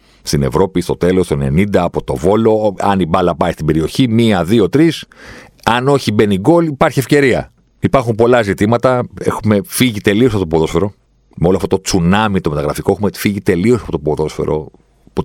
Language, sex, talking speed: Greek, male, 185 wpm